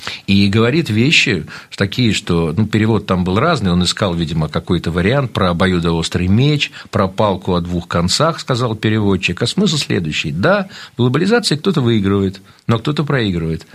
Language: Russian